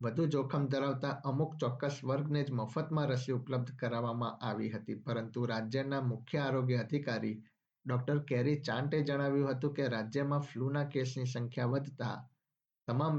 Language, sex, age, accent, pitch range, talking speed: Gujarati, male, 50-69, native, 125-145 Hz, 135 wpm